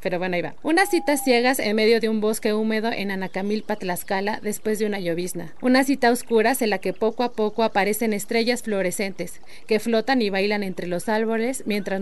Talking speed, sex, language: 200 wpm, female, Spanish